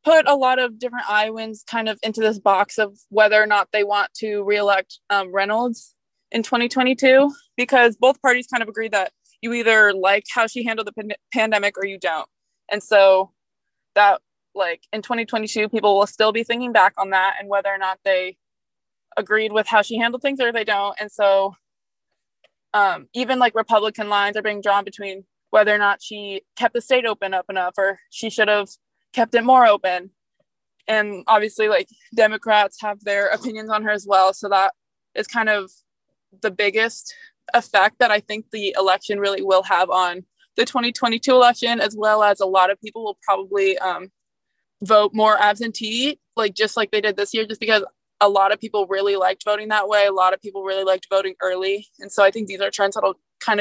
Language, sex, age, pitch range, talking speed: English, female, 20-39, 200-230 Hz, 200 wpm